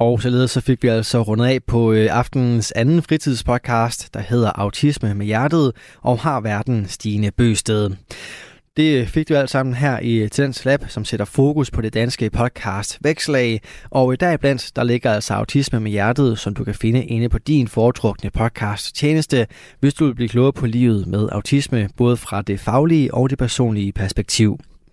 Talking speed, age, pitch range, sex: 185 wpm, 20-39, 110-140 Hz, male